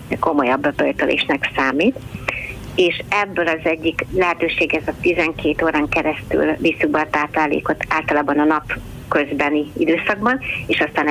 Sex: female